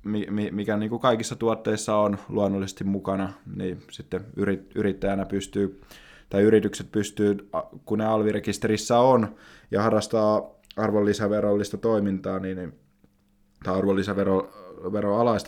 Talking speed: 95 wpm